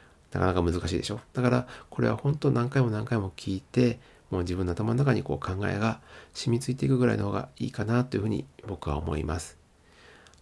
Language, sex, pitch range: Japanese, male, 95-125 Hz